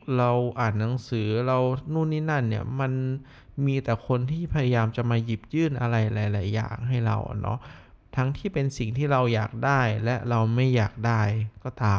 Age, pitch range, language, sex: 20-39, 110-130 Hz, Thai, male